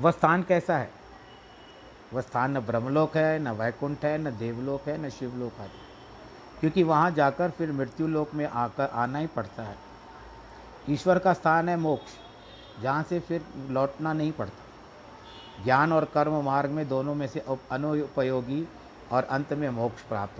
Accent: native